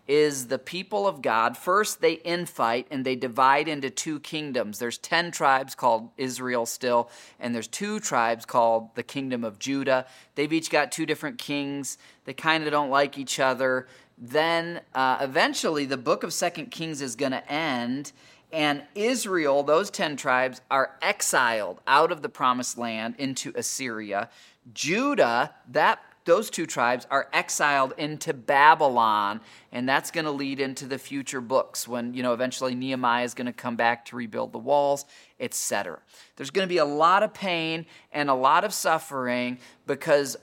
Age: 30-49